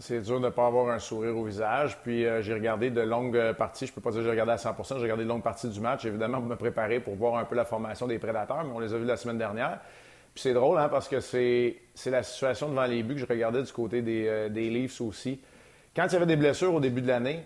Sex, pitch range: male, 115-145 Hz